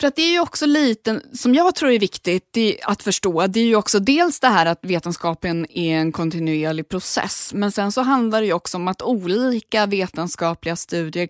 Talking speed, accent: 215 wpm, native